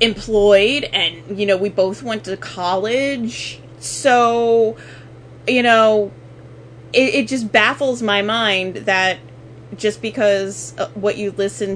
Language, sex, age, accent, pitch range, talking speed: English, female, 20-39, American, 180-225 Hz, 120 wpm